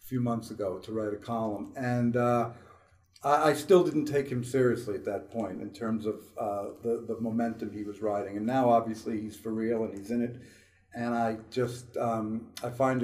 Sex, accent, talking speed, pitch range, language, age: male, American, 205 wpm, 100-125 Hz, English, 50-69